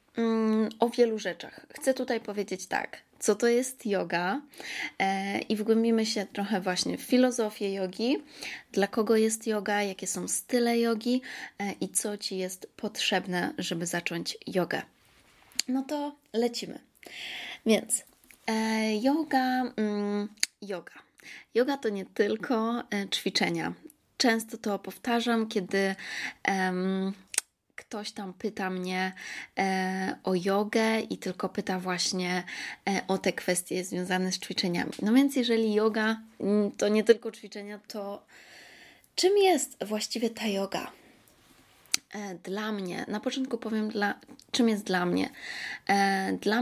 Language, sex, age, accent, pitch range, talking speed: Polish, female, 20-39, native, 190-230 Hz, 130 wpm